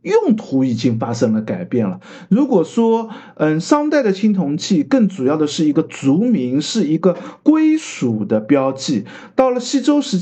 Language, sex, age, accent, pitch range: Chinese, male, 50-69, native, 170-255 Hz